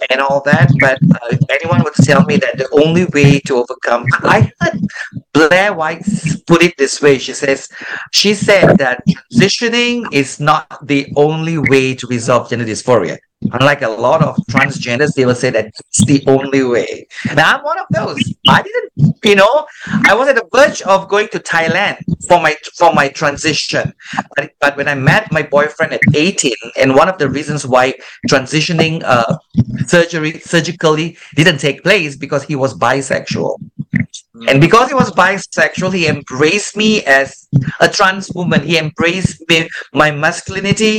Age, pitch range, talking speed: 50-69, 140-180 Hz, 170 wpm